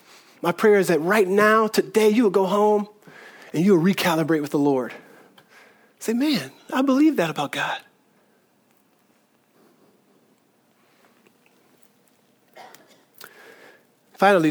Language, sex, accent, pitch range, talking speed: English, male, American, 160-200 Hz, 110 wpm